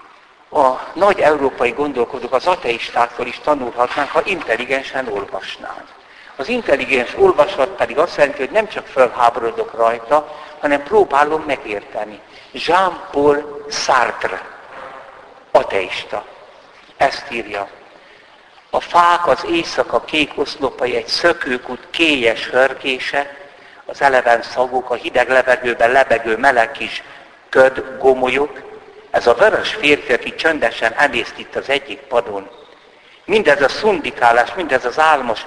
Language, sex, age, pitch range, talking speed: Hungarian, male, 60-79, 120-155 Hz, 115 wpm